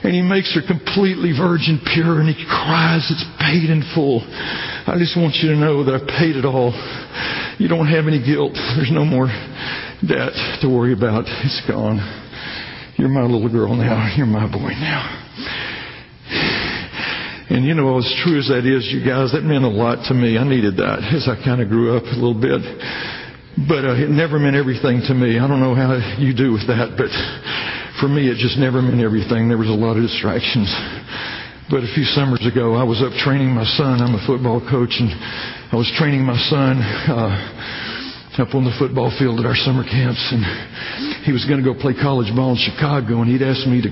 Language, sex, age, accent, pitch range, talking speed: English, male, 60-79, American, 120-140 Hz, 210 wpm